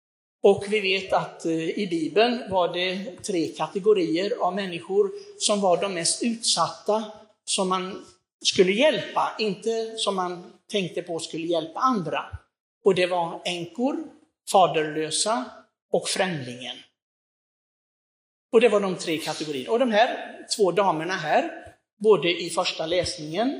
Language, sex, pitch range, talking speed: Swedish, male, 165-220 Hz, 130 wpm